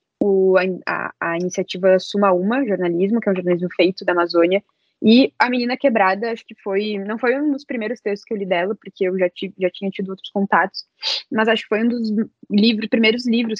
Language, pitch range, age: Portuguese, 185-220 Hz, 10-29